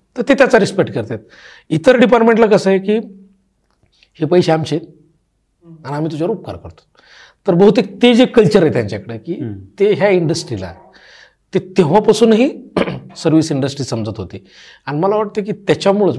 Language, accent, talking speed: Marathi, native, 150 wpm